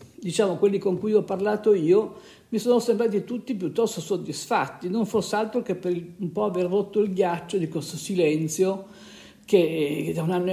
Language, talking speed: Italian, 175 wpm